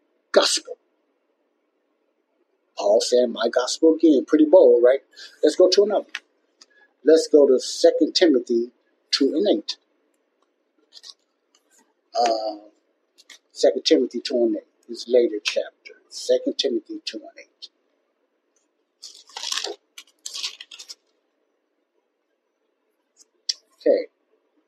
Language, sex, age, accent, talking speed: English, male, 60-79, American, 90 wpm